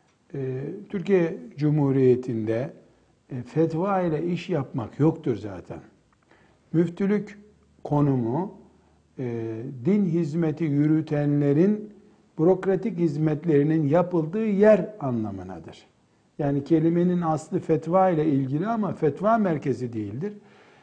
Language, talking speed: Turkish, 80 wpm